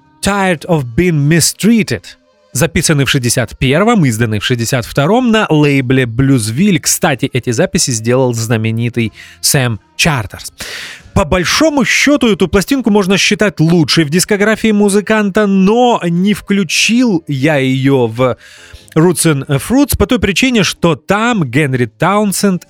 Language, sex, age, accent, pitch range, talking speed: Russian, male, 30-49, native, 130-190 Hz, 125 wpm